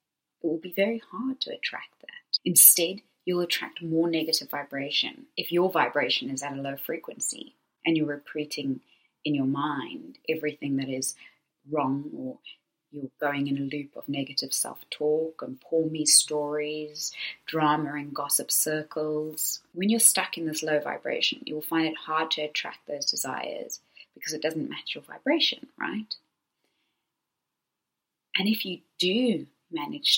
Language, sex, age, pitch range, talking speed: English, female, 20-39, 150-195 Hz, 150 wpm